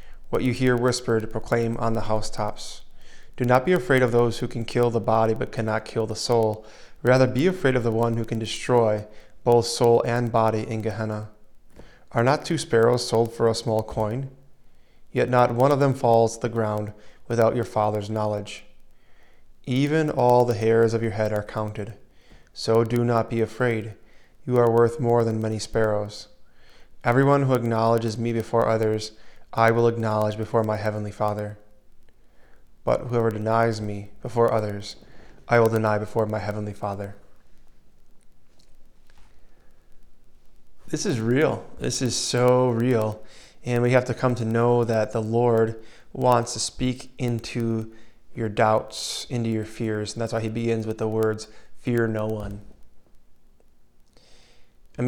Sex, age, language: male, 20-39, English